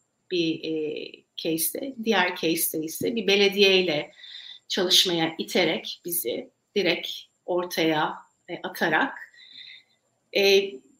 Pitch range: 185-225 Hz